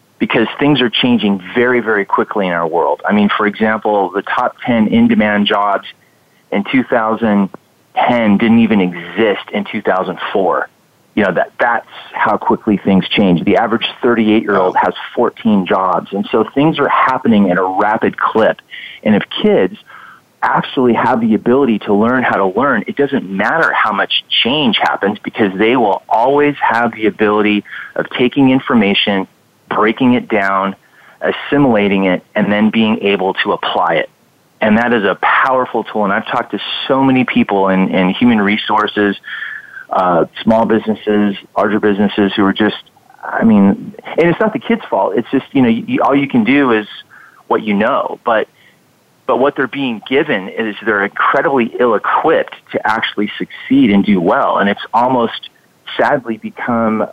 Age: 30-49